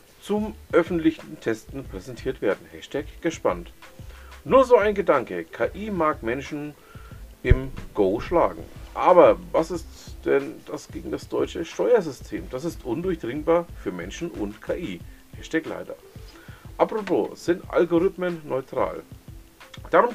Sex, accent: male, German